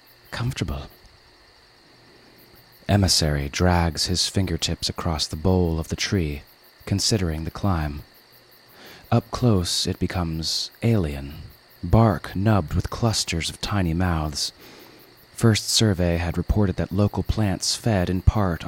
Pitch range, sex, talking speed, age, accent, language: 80-100 Hz, male, 115 wpm, 30-49, American, English